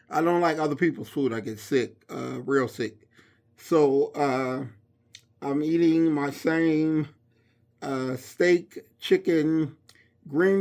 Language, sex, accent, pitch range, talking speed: English, male, American, 120-155 Hz, 125 wpm